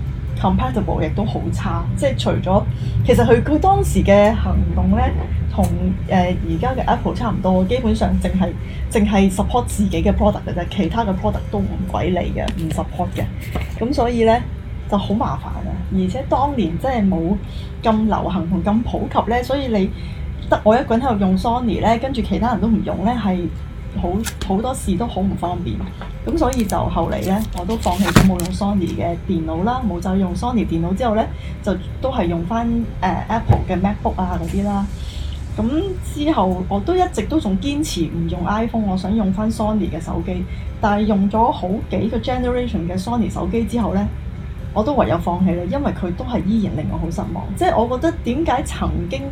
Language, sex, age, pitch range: Chinese, female, 10-29, 165-225 Hz